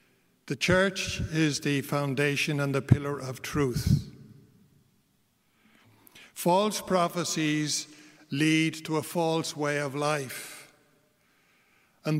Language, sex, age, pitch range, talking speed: English, male, 60-79, 145-180 Hz, 100 wpm